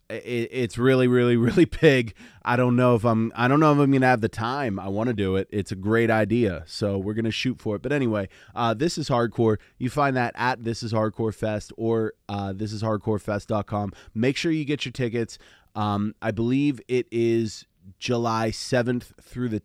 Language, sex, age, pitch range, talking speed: English, male, 30-49, 105-125 Hz, 210 wpm